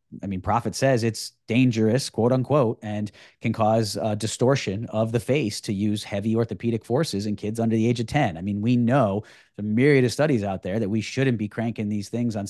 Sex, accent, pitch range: male, American, 105-130 Hz